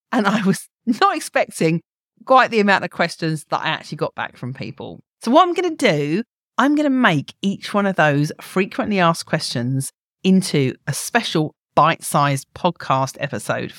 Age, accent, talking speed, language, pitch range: 40-59, British, 175 wpm, English, 150-215 Hz